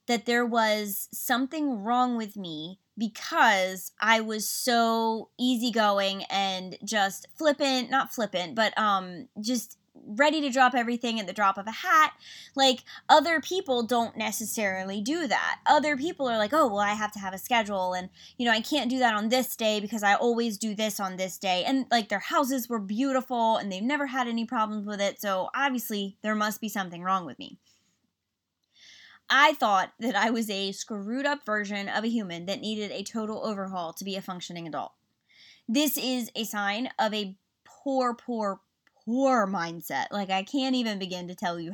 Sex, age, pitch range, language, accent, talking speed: female, 20-39, 200-260 Hz, English, American, 185 wpm